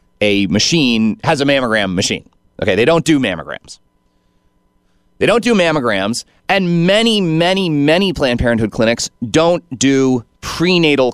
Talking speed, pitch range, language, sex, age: 135 wpm, 120-175 Hz, English, male, 30-49